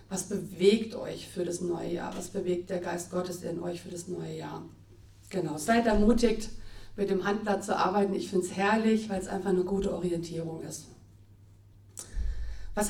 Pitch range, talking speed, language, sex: 175-200 Hz, 175 wpm, English, female